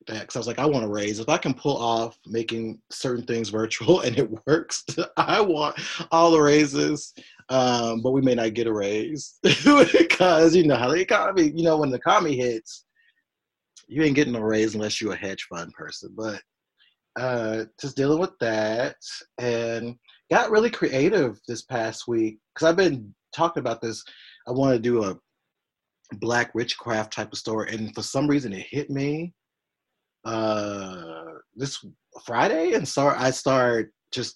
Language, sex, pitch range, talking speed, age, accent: English, male, 110-145 Hz, 175 wpm, 30-49, American